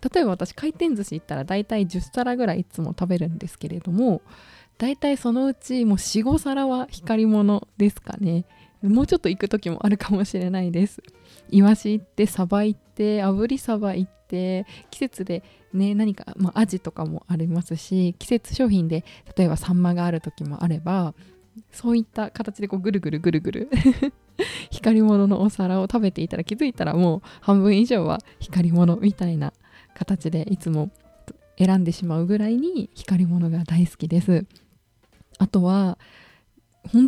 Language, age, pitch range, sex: Japanese, 20-39, 180-230 Hz, female